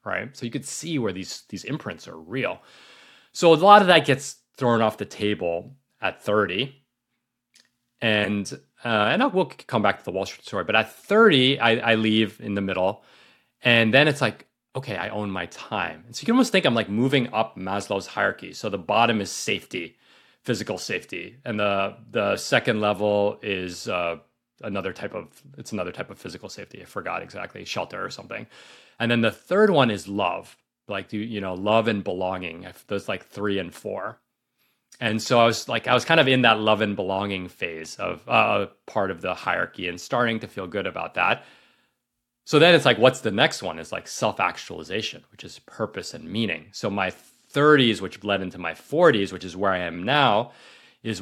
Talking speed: 200 wpm